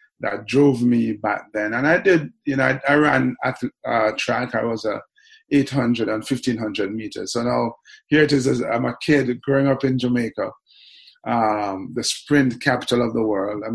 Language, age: English, 30-49